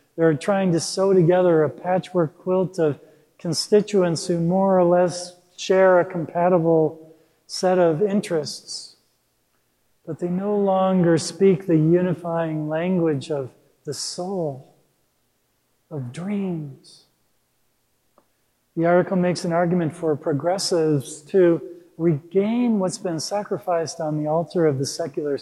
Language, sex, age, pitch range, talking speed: English, male, 50-69, 145-180 Hz, 120 wpm